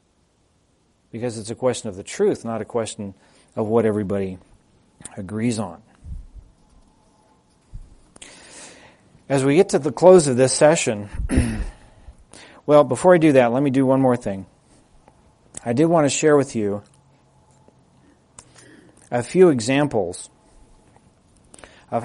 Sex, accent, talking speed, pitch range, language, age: male, American, 125 wpm, 110-140 Hz, English, 40-59